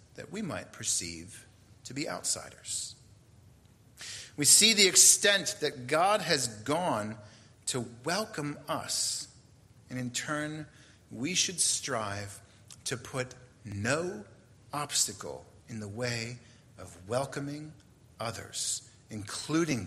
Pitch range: 105-135 Hz